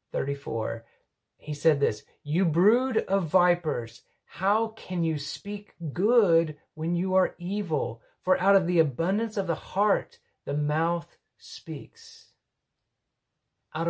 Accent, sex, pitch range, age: American, male, 125-165 Hz, 30-49